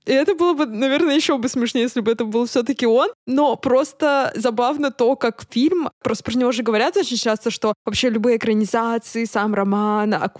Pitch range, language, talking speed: 225-285 Hz, Russian, 190 wpm